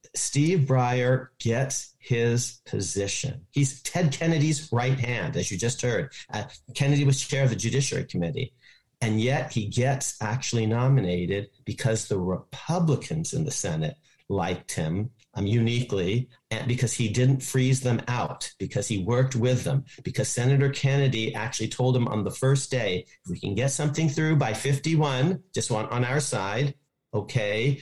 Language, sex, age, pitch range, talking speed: English, male, 40-59, 115-135 Hz, 155 wpm